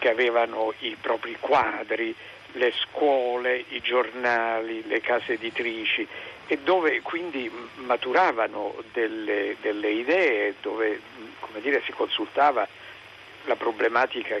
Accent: native